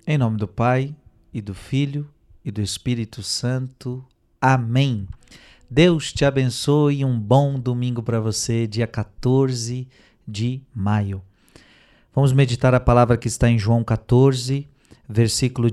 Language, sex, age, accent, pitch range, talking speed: Portuguese, male, 40-59, Brazilian, 105-130 Hz, 135 wpm